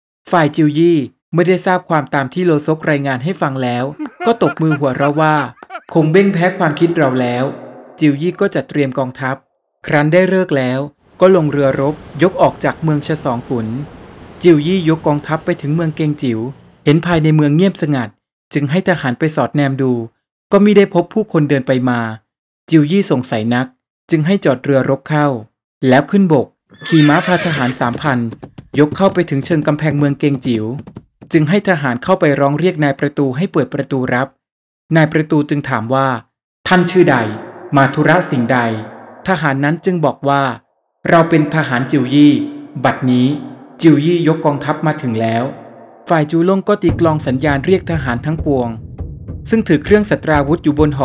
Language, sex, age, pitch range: Thai, male, 20-39, 135-170 Hz